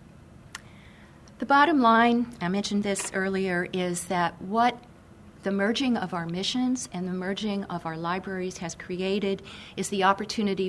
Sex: female